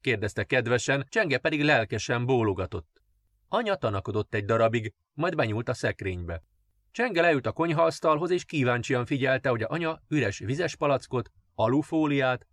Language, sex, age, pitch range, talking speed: Hungarian, male, 30-49, 105-145 Hz, 135 wpm